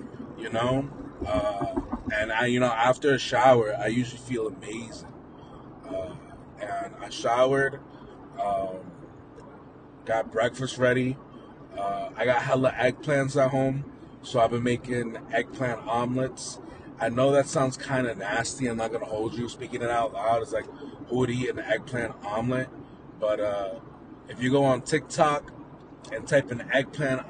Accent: American